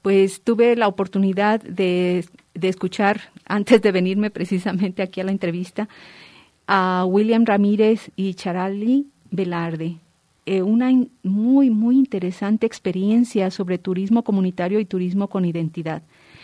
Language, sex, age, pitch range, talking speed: Spanish, female, 40-59, 185-220 Hz, 125 wpm